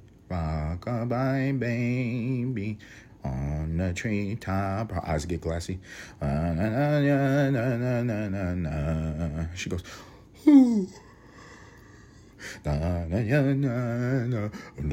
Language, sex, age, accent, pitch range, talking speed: English, male, 30-49, American, 100-125 Hz, 40 wpm